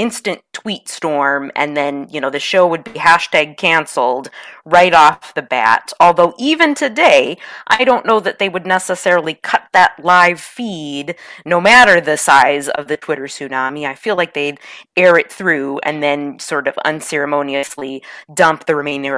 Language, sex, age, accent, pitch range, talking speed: English, female, 30-49, American, 145-185 Hz, 170 wpm